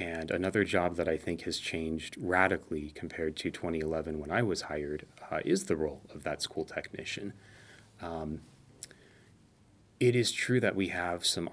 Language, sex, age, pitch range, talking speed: English, male, 30-49, 80-100 Hz, 165 wpm